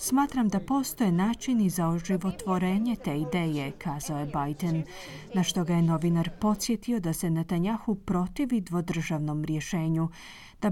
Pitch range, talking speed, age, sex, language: 165-220 Hz, 135 wpm, 30-49, female, Croatian